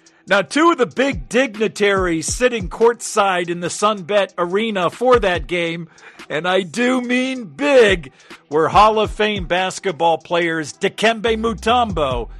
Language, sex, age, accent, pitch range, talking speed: English, male, 50-69, American, 170-230 Hz, 135 wpm